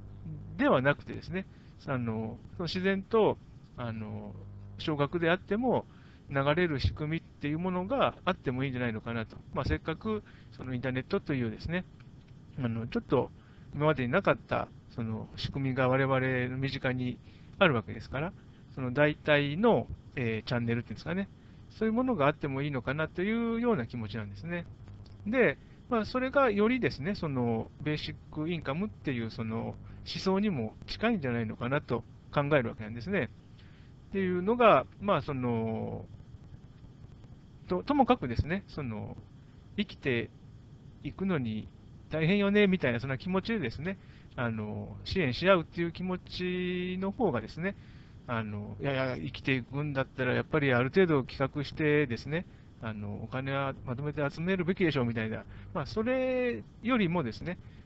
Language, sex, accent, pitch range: Japanese, male, native, 115-175 Hz